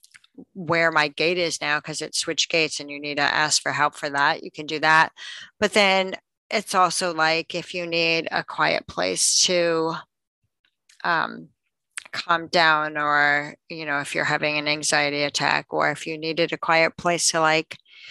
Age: 30-49